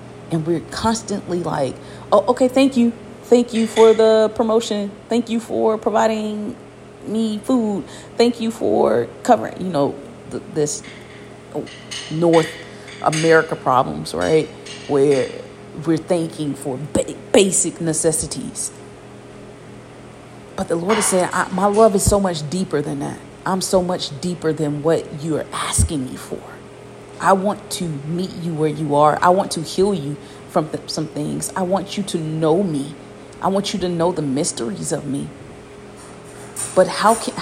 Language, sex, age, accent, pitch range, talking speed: English, female, 40-59, American, 160-220 Hz, 150 wpm